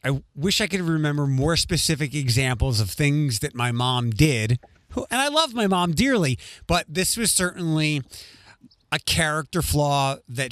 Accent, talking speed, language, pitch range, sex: American, 165 wpm, English, 125-185 Hz, male